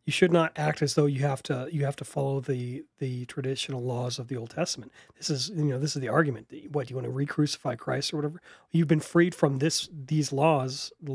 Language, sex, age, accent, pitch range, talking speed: English, male, 40-59, American, 135-165 Hz, 255 wpm